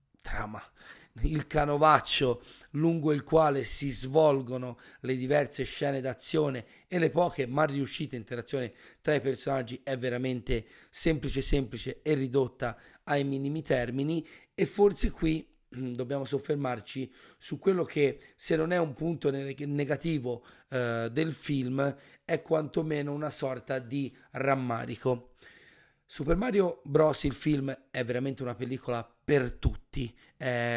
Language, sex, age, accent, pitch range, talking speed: Italian, male, 40-59, native, 130-150 Hz, 125 wpm